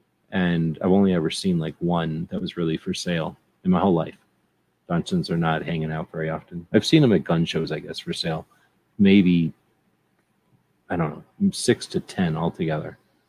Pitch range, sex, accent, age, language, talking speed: 90-110 Hz, male, American, 40-59, English, 185 wpm